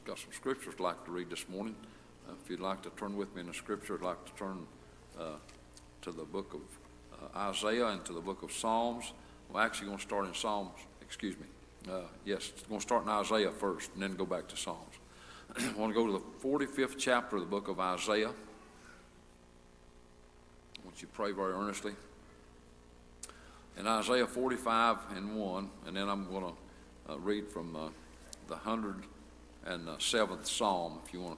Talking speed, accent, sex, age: 200 wpm, American, male, 60-79